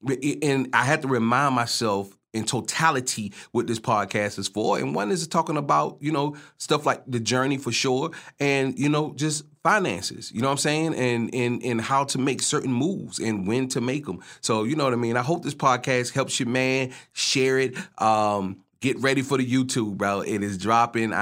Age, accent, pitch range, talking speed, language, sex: 30-49, American, 105-135 Hz, 210 wpm, English, male